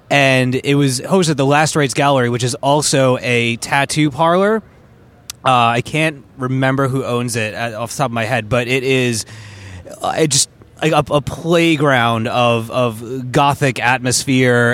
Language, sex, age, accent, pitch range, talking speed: English, male, 20-39, American, 120-150 Hz, 165 wpm